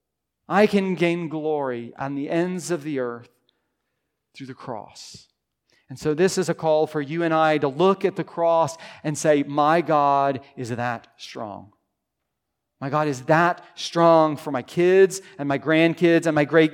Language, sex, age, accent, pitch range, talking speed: English, male, 40-59, American, 135-170 Hz, 175 wpm